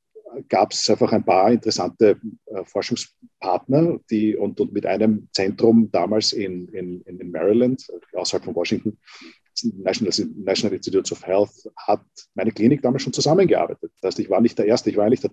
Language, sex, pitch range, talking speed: German, male, 110-145 Hz, 170 wpm